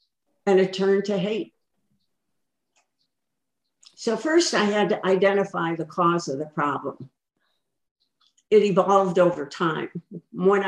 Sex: female